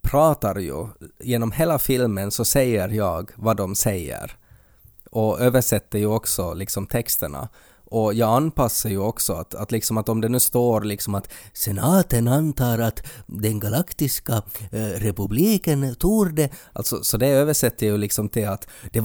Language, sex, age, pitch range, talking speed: Swedish, male, 20-39, 105-125 Hz, 155 wpm